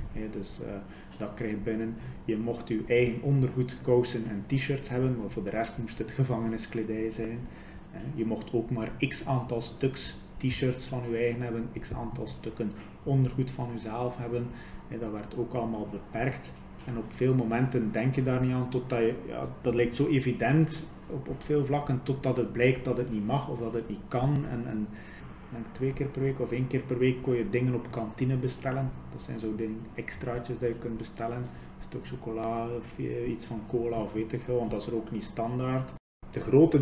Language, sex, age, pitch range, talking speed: Dutch, male, 30-49, 110-125 Hz, 200 wpm